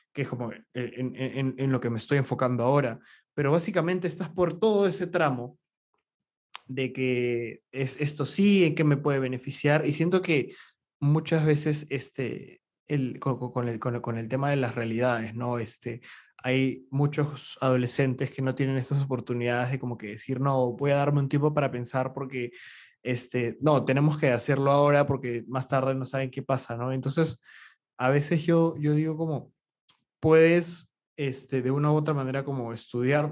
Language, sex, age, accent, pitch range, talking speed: Spanish, male, 20-39, Argentinian, 130-160 Hz, 180 wpm